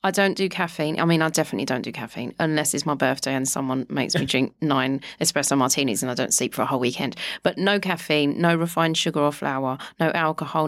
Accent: British